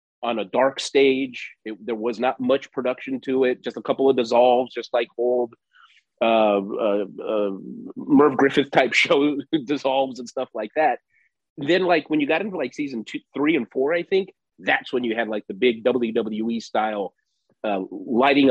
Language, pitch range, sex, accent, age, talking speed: English, 110-140 Hz, male, American, 30-49, 180 wpm